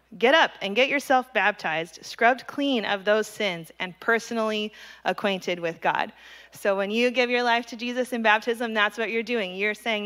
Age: 20-39